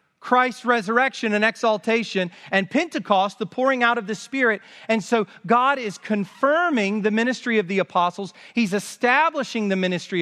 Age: 40-59